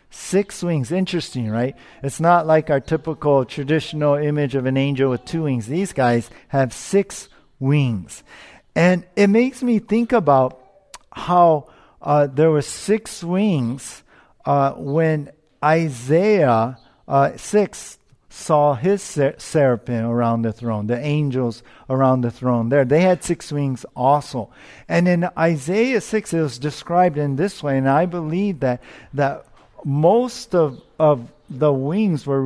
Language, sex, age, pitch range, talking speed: English, male, 50-69, 135-175 Hz, 140 wpm